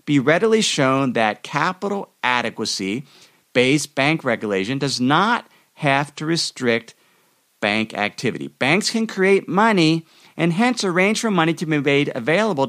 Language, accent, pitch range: English, American, 130-185 Hz